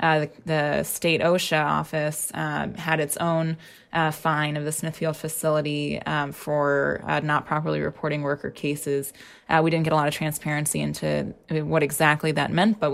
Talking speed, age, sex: 185 wpm, 20-39, female